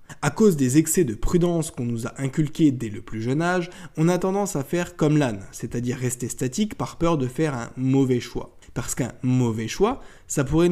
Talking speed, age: 215 wpm, 20-39